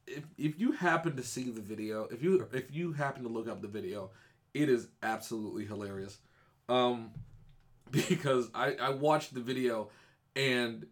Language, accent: English, American